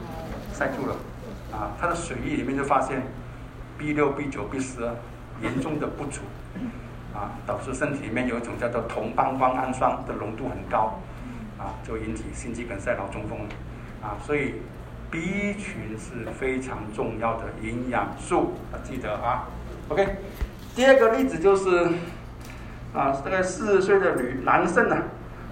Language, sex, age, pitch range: Chinese, male, 60-79, 110-185 Hz